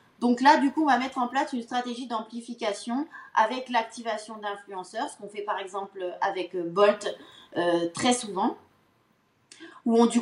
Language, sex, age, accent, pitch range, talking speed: French, female, 20-39, French, 205-255 Hz, 165 wpm